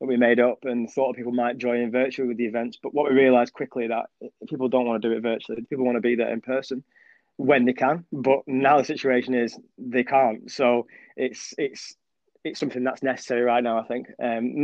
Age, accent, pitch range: 20-39, British, 120-135 Hz